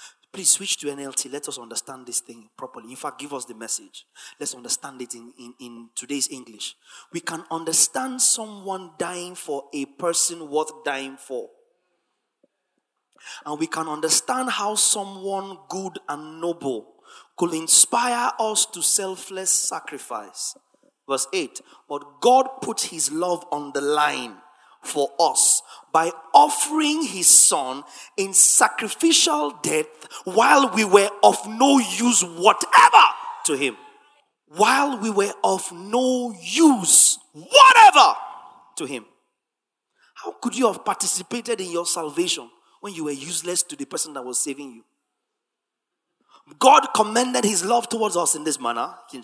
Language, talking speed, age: English, 140 wpm, 30-49